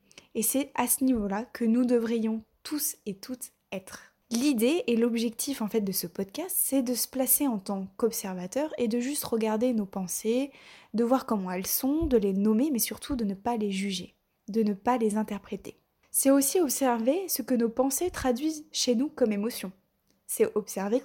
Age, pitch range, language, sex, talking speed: 20-39, 205-250 Hz, French, female, 190 wpm